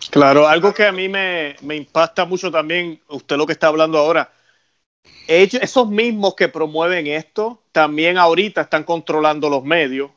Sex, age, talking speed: male, 30-49, 165 wpm